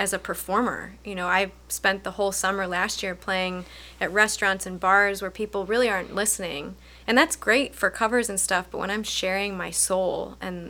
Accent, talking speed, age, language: American, 200 wpm, 20-39, English